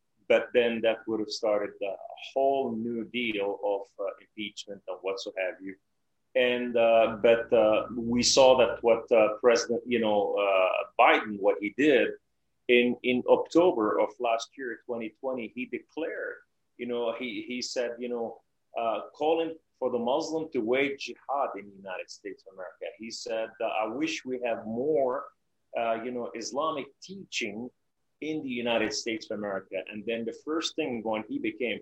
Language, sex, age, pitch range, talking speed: English, male, 30-49, 110-150 Hz, 175 wpm